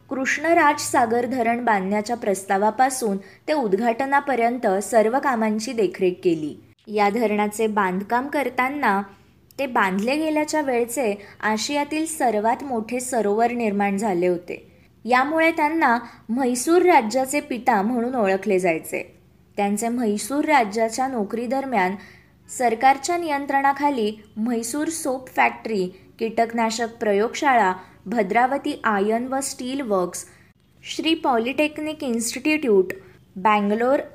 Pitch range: 210-270 Hz